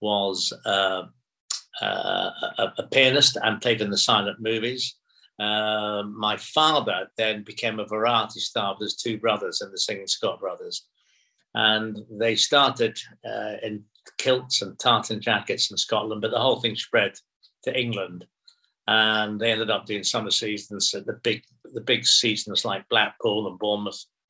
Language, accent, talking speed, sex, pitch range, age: English, British, 160 wpm, male, 110-145 Hz, 60-79